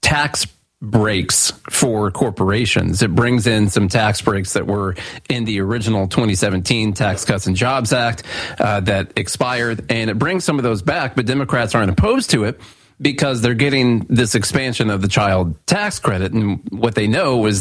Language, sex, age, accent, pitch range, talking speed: English, male, 40-59, American, 105-130 Hz, 175 wpm